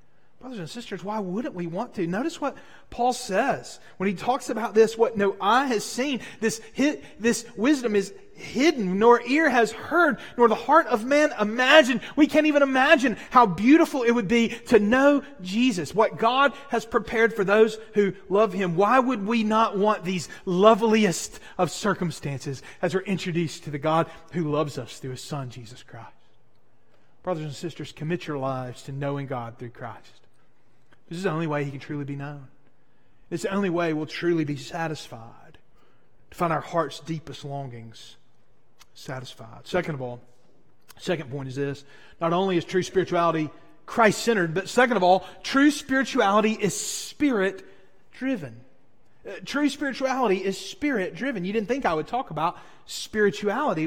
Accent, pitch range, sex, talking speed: American, 150-235 Hz, male, 170 wpm